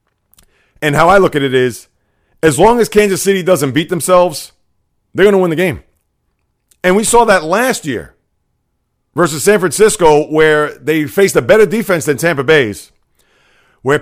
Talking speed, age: 170 wpm, 30-49